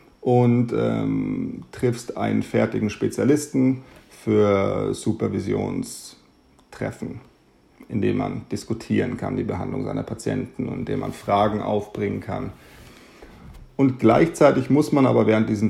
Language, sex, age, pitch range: German, male, 40-59, 100-125 Hz